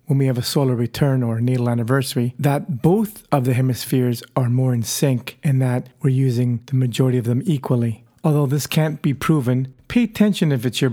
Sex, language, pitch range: male, English, 130-150 Hz